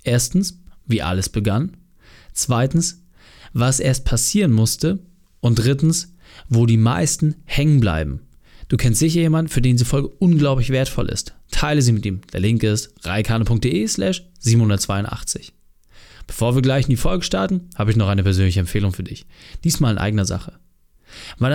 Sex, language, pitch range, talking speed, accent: male, German, 110-155 Hz, 155 wpm, German